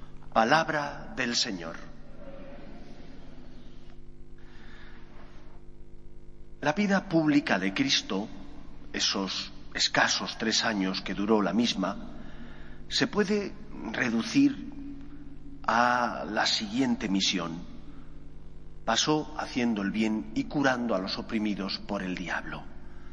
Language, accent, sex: Spanish, Spanish, male